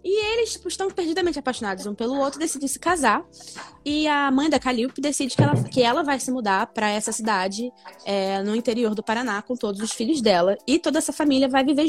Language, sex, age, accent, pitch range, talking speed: Portuguese, female, 10-29, Brazilian, 210-285 Hz, 220 wpm